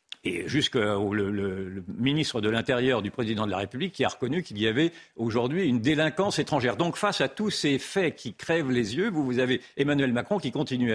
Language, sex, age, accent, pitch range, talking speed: French, male, 50-69, French, 115-150 Hz, 220 wpm